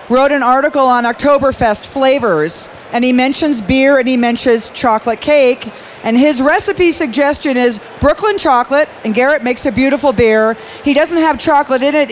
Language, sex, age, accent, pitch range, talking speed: English, female, 40-59, American, 230-295 Hz, 170 wpm